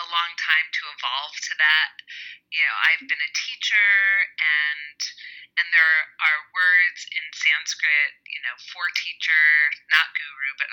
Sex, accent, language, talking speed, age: female, American, English, 145 wpm, 30-49